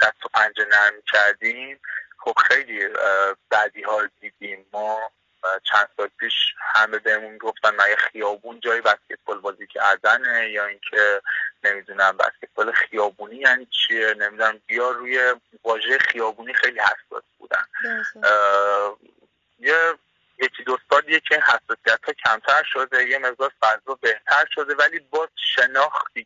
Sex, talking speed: male, 120 wpm